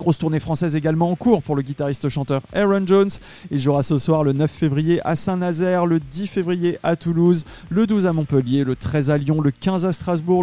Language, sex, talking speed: French, male, 220 wpm